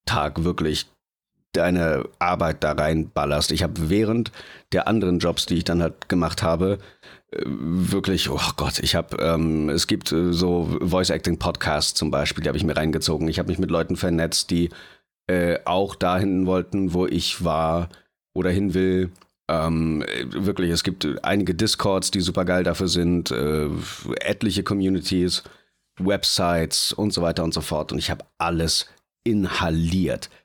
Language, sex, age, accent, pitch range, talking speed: German, male, 40-59, German, 80-95 Hz, 160 wpm